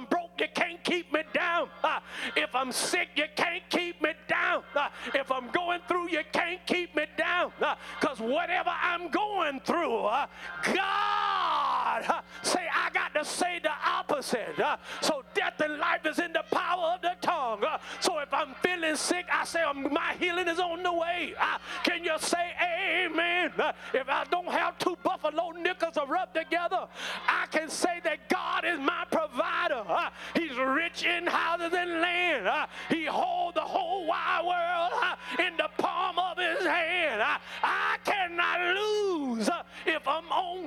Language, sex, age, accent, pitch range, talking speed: English, male, 40-59, American, 315-355 Hz, 180 wpm